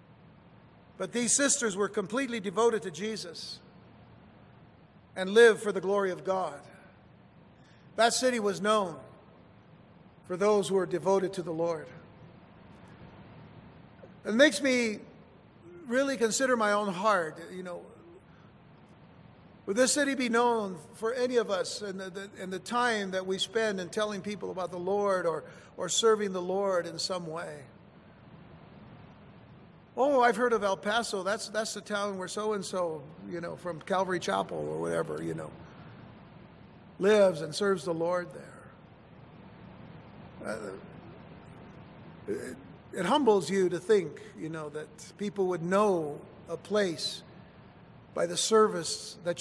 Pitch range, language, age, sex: 180-220 Hz, English, 50-69, male